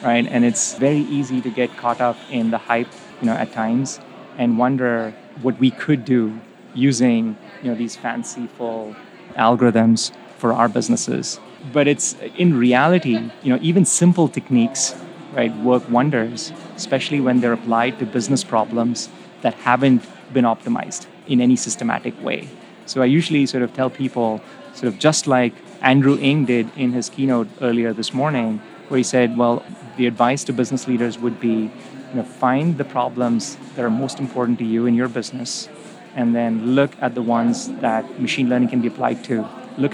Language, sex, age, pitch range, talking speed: English, male, 30-49, 120-140 Hz, 175 wpm